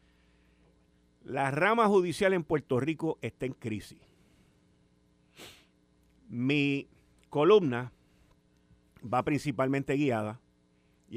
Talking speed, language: 80 wpm, Spanish